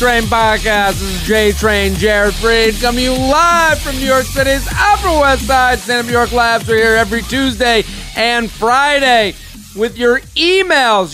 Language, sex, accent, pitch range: English, male, American, 175-230 Hz